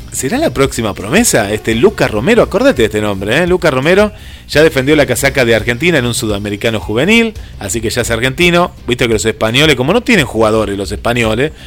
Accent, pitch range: Argentinian, 115-145 Hz